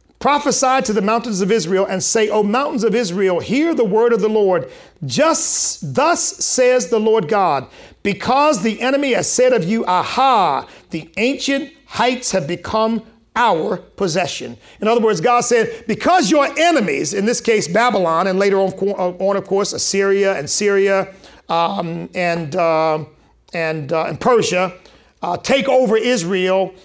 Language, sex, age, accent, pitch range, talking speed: English, male, 50-69, American, 190-255 Hz, 155 wpm